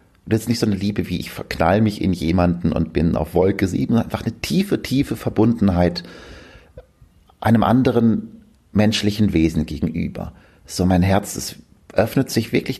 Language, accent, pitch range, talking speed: German, German, 80-100 Hz, 160 wpm